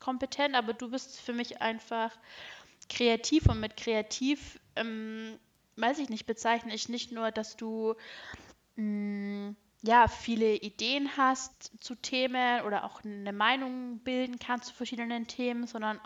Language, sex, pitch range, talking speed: German, female, 220-255 Hz, 140 wpm